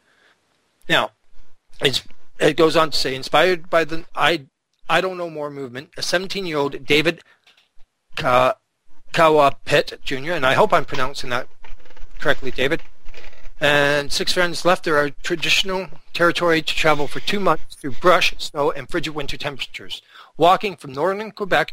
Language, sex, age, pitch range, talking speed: English, male, 40-59, 135-175 Hz, 145 wpm